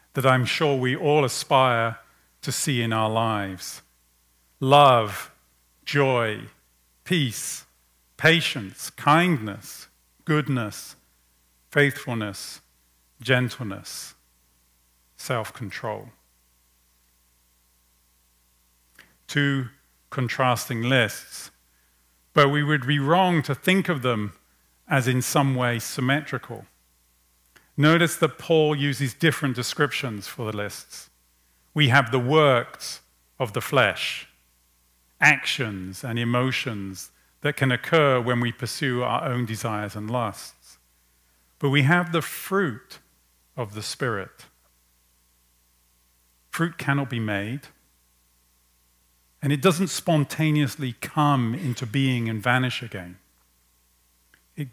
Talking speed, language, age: 100 wpm, English, 40-59